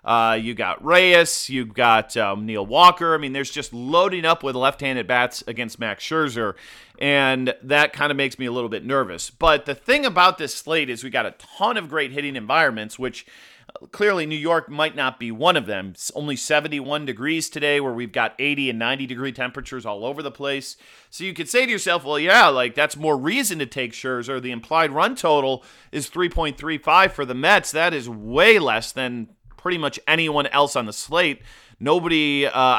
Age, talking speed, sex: 30-49, 205 wpm, male